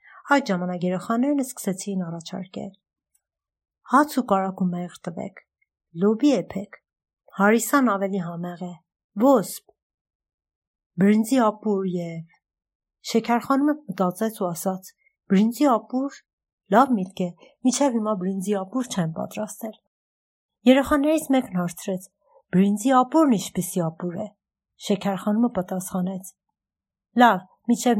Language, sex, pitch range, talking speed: Persian, female, 185-240 Hz, 100 wpm